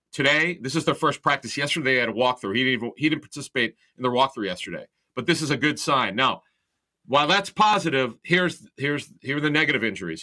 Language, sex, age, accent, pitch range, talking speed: English, male, 40-59, American, 125-155 Hz, 215 wpm